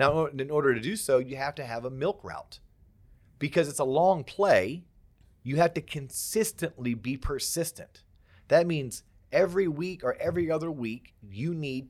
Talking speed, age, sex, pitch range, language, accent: 170 wpm, 30-49, male, 120-180 Hz, English, American